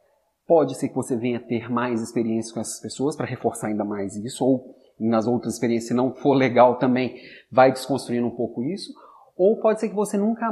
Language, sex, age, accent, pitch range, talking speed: Portuguese, male, 30-49, Brazilian, 135-195 Hz, 210 wpm